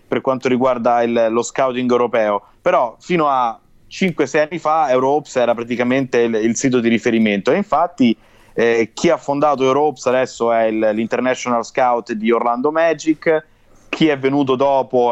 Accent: native